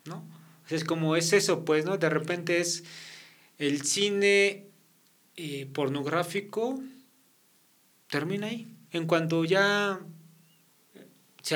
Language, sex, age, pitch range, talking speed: Spanish, male, 40-59, 130-165 Hz, 105 wpm